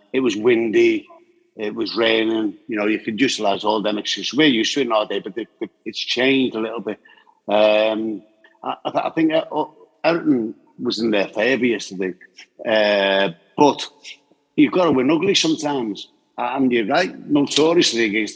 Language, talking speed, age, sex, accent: English, 165 wpm, 50-69, male, British